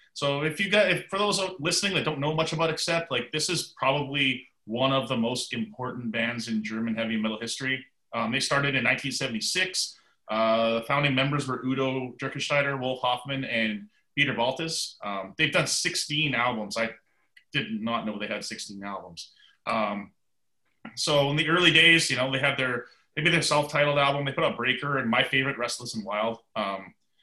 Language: English